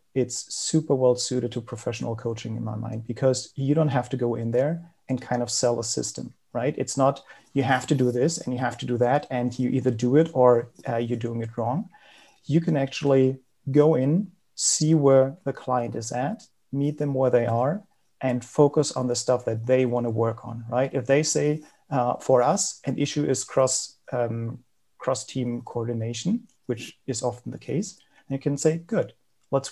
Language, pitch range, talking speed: English, 120-145 Hz, 205 wpm